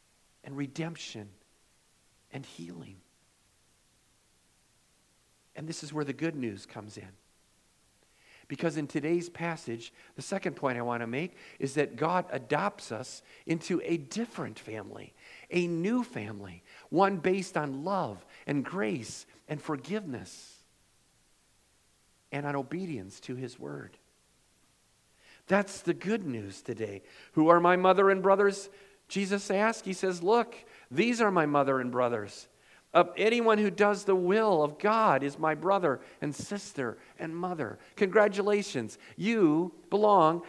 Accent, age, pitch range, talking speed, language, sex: American, 50-69, 140-195 Hz, 130 wpm, English, male